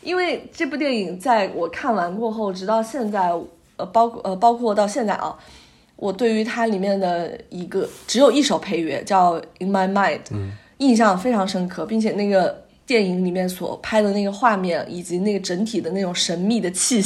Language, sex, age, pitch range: Chinese, female, 20-39, 185-225 Hz